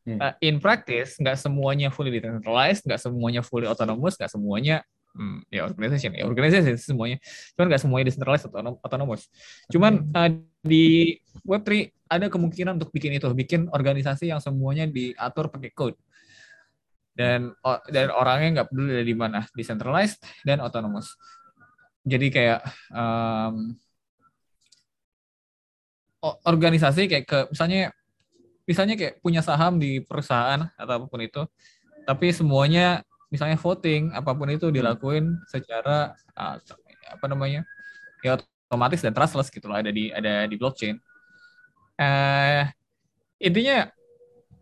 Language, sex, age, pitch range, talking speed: Indonesian, male, 20-39, 120-175 Hz, 120 wpm